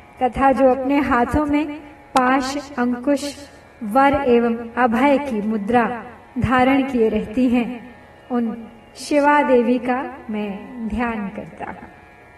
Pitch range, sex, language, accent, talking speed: 285-410 Hz, female, Hindi, native, 110 wpm